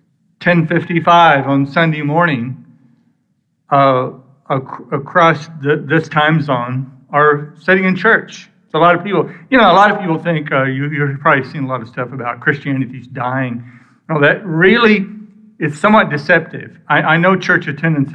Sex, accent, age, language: male, American, 60-79, English